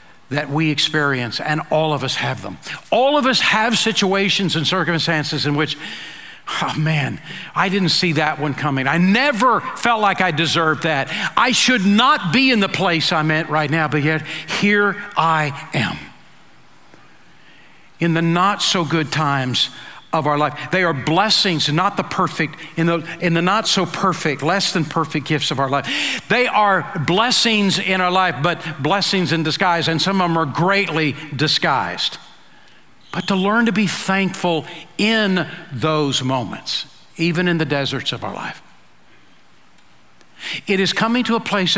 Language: English